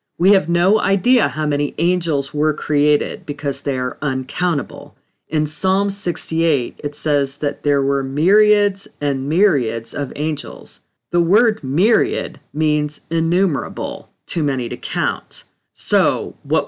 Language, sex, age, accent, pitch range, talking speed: English, female, 40-59, American, 140-180 Hz, 135 wpm